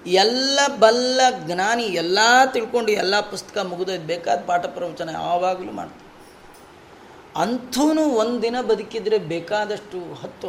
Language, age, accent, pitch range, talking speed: Kannada, 30-49, native, 165-235 Hz, 110 wpm